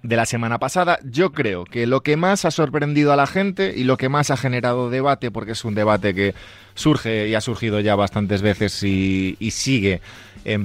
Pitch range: 95-130 Hz